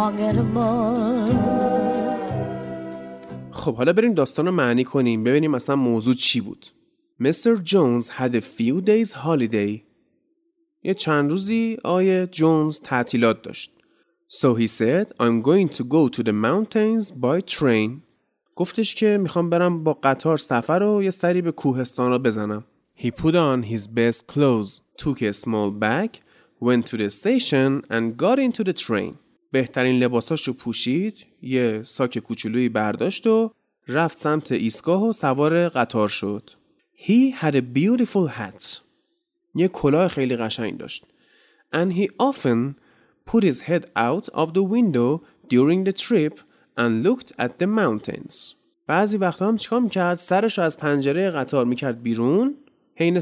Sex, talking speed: male, 140 wpm